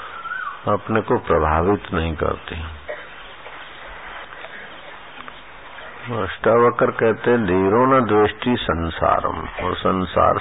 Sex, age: male, 50-69